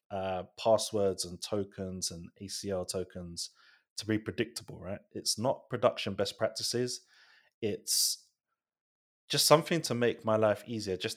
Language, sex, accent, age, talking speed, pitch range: English, male, British, 20-39, 135 wpm, 95-120 Hz